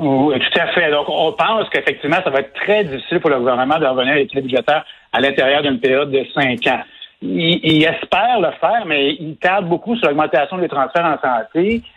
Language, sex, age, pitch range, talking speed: French, male, 60-79, 135-190 Hz, 215 wpm